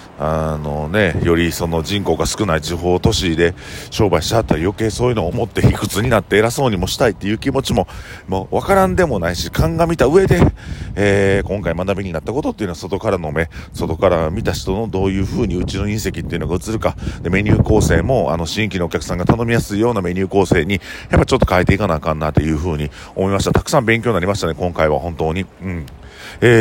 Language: Japanese